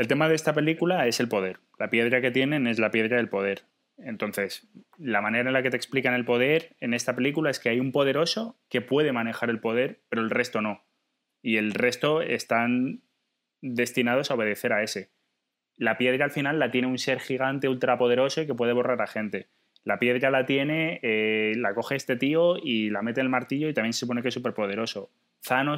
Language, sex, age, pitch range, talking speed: Spanish, male, 20-39, 110-130 Hz, 215 wpm